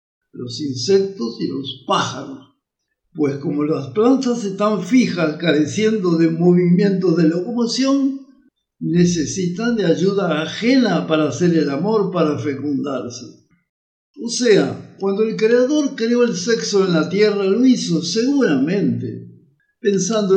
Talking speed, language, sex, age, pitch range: 120 wpm, Spanish, male, 60-79, 170-230 Hz